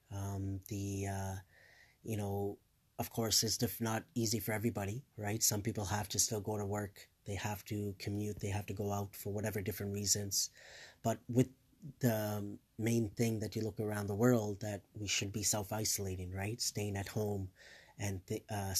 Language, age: English, 30-49